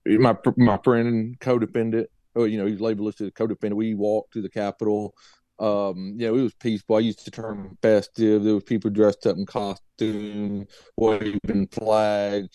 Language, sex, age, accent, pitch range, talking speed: English, male, 40-59, American, 100-110 Hz, 165 wpm